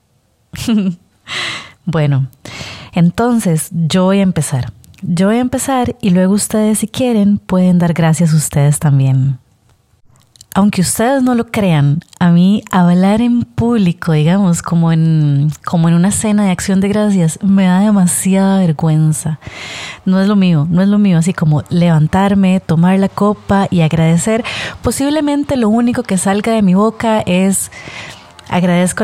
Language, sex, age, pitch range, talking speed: Spanish, female, 30-49, 155-200 Hz, 150 wpm